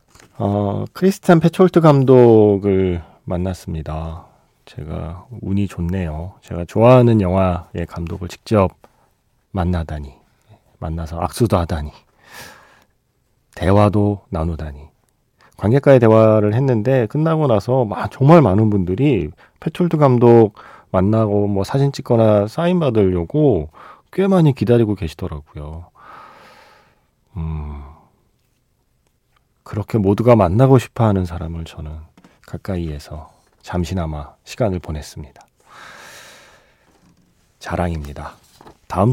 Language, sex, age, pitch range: Korean, male, 40-59, 85-125 Hz